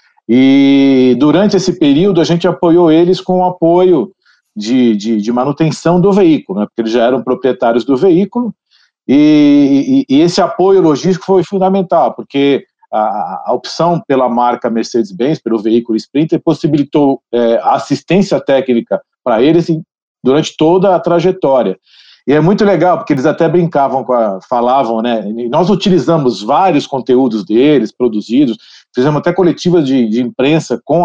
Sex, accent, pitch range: male, Brazilian, 125-185 Hz